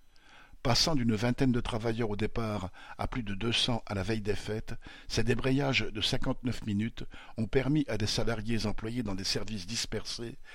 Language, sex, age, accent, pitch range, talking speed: French, male, 50-69, French, 105-125 Hz, 175 wpm